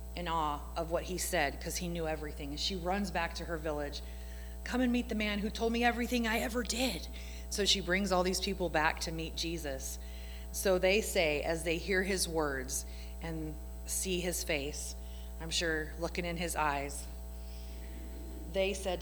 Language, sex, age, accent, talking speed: English, female, 30-49, American, 185 wpm